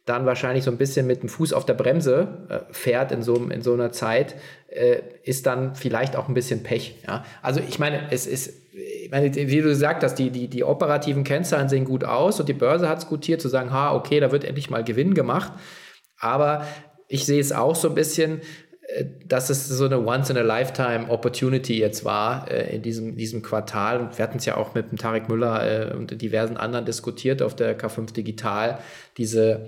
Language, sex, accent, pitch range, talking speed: German, male, German, 115-140 Hz, 200 wpm